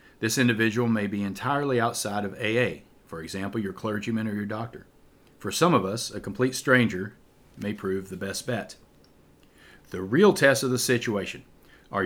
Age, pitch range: 40-59, 100-120 Hz